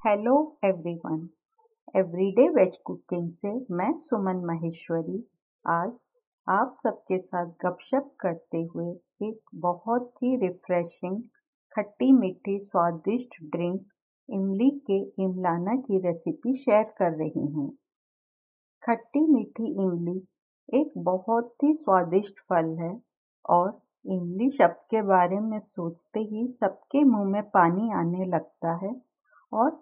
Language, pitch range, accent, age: Hindi, 180-240 Hz, native, 50-69